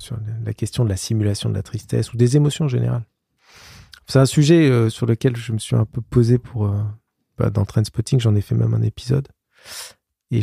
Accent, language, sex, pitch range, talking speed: French, French, male, 115-140 Hz, 220 wpm